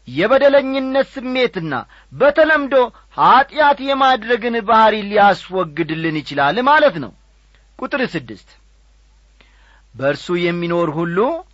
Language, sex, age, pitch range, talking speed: Amharic, male, 40-59, 150-235 Hz, 80 wpm